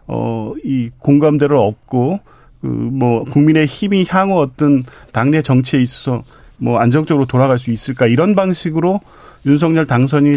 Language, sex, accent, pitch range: Korean, male, native, 125-160 Hz